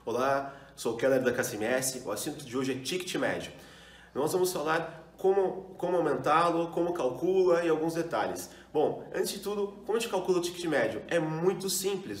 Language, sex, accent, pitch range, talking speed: Portuguese, male, Brazilian, 155-190 Hz, 185 wpm